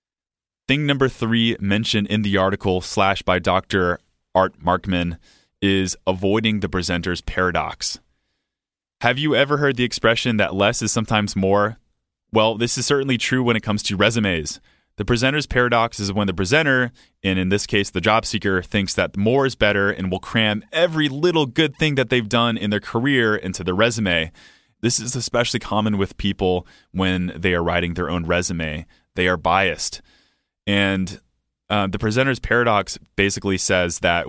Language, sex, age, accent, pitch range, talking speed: English, male, 30-49, American, 95-120 Hz, 170 wpm